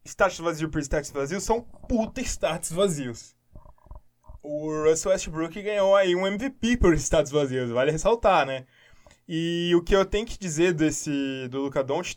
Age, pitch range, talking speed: 10-29, 130-205 Hz, 165 wpm